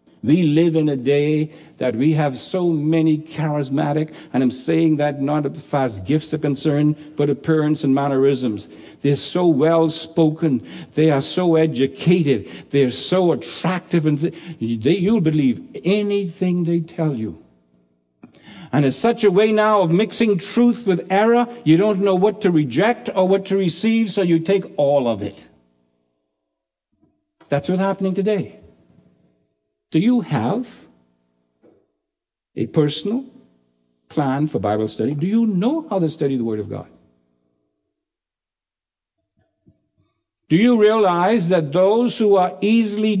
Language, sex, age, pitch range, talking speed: English, male, 60-79, 115-185 Hz, 145 wpm